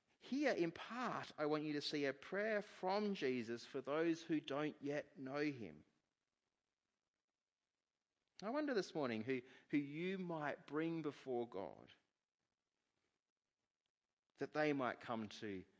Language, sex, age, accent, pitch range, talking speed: English, male, 40-59, Australian, 120-165 Hz, 135 wpm